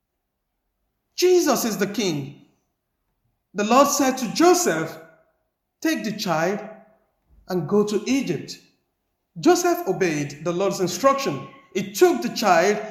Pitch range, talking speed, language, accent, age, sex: 210-325 Hz, 115 wpm, English, Nigerian, 50-69, male